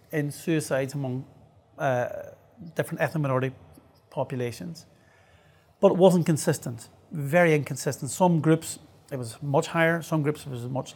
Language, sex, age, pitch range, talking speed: English, male, 40-59, 135-160 Hz, 135 wpm